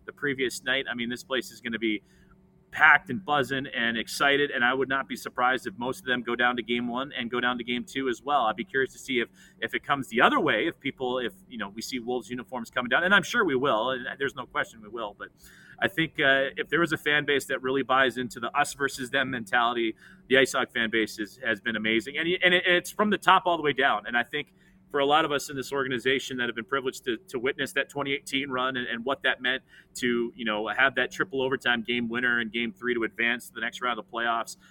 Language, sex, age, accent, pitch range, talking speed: English, male, 30-49, American, 120-145 Hz, 275 wpm